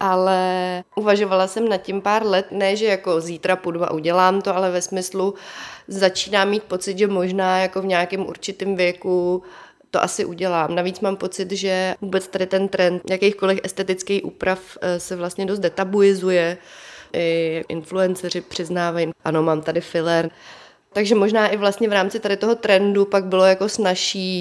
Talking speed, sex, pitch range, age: 160 wpm, female, 180-195 Hz, 30-49